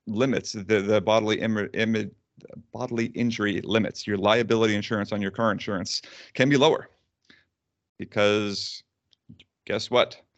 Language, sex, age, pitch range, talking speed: English, male, 40-59, 95-110 Hz, 120 wpm